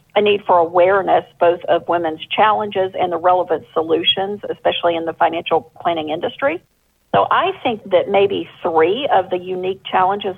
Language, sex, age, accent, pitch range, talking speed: English, female, 50-69, American, 170-245 Hz, 160 wpm